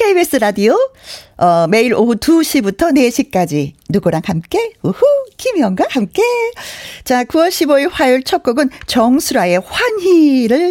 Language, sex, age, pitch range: Korean, female, 40-59, 180-295 Hz